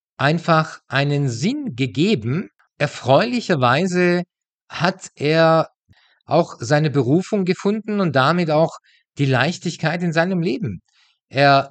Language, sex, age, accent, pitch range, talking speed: German, male, 50-69, German, 140-180 Hz, 100 wpm